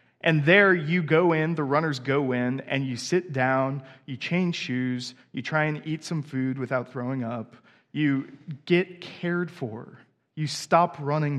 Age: 20-39